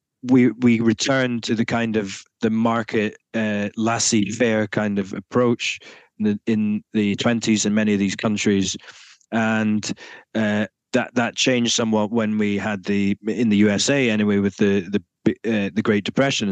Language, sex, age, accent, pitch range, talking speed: English, male, 20-39, British, 105-125 Hz, 165 wpm